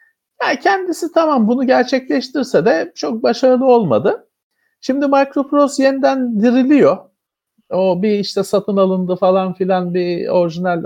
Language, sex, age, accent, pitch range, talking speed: Turkish, male, 50-69, native, 160-265 Hz, 120 wpm